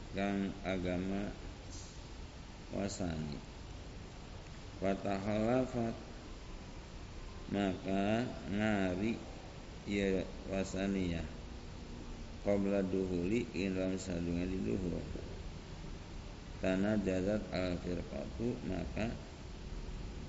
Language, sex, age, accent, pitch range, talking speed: Indonesian, male, 50-69, native, 85-100 Hz, 50 wpm